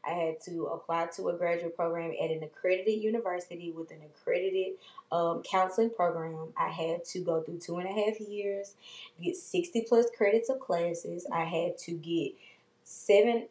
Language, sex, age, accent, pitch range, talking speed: English, female, 20-39, American, 165-210 Hz, 175 wpm